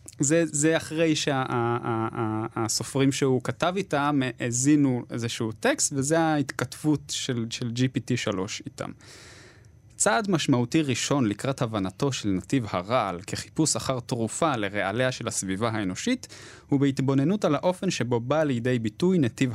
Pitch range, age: 115-150 Hz, 20-39